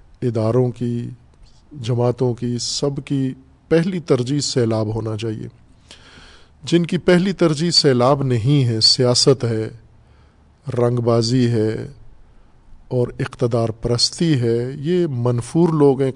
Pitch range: 115-135 Hz